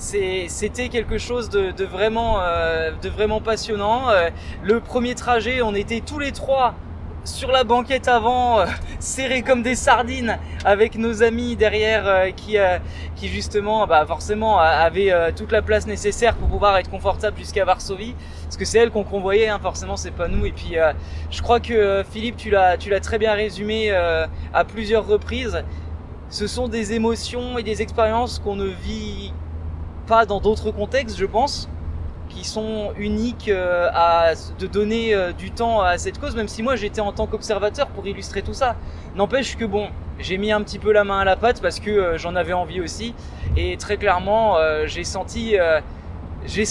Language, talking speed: French, 190 wpm